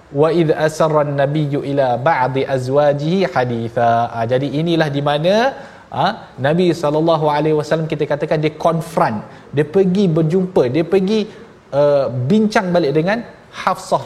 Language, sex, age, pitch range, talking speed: Malayalam, male, 30-49, 145-180 Hz, 95 wpm